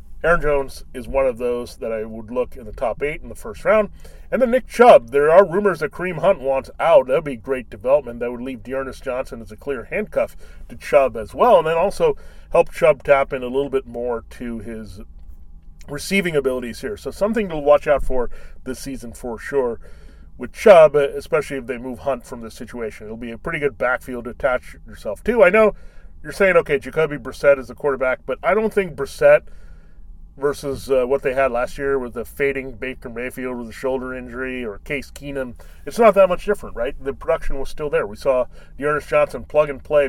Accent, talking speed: American, 220 wpm